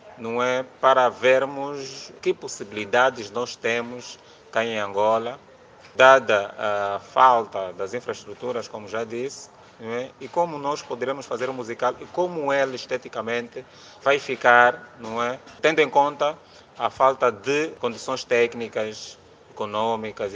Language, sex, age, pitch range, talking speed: Portuguese, male, 30-49, 120-160 Hz, 135 wpm